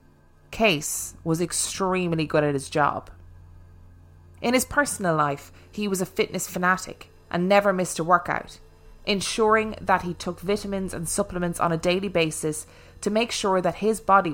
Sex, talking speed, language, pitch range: female, 160 wpm, English, 155-195 Hz